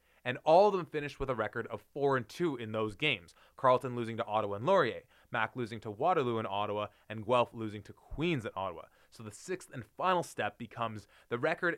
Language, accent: English, American